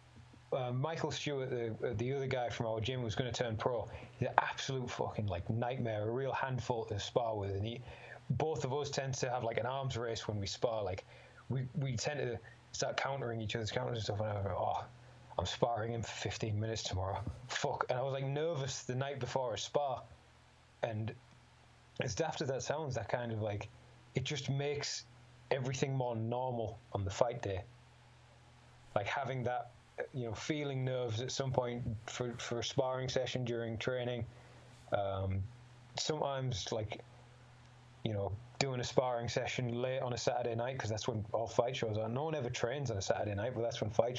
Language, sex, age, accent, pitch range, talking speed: English, male, 20-39, British, 115-130 Hz, 200 wpm